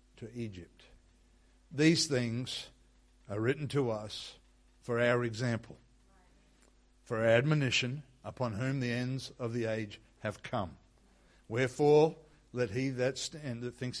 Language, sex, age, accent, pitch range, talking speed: English, male, 60-79, Australian, 115-140 Hz, 125 wpm